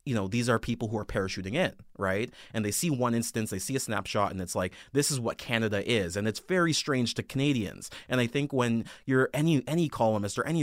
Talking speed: 245 wpm